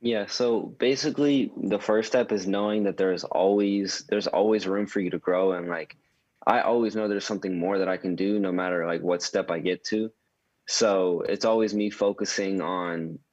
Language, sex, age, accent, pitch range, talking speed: English, male, 20-39, American, 90-105 Hz, 200 wpm